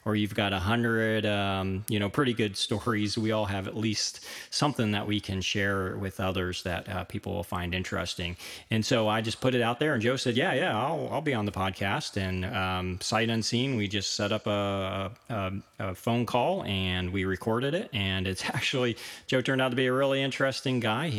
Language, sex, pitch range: English, male, 95-115 Hz